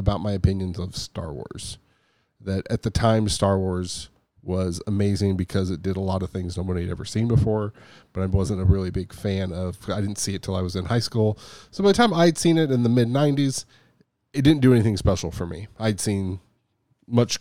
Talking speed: 225 wpm